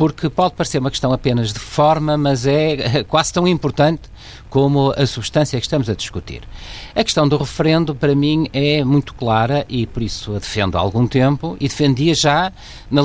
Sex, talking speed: male, 190 wpm